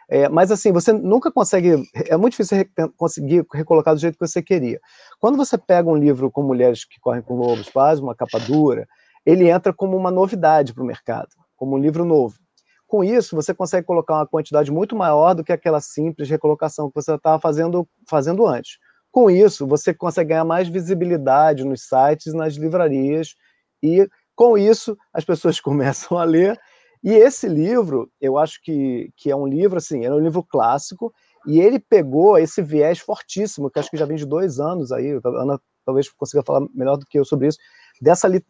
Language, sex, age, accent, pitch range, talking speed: Portuguese, male, 30-49, Brazilian, 145-190 Hz, 190 wpm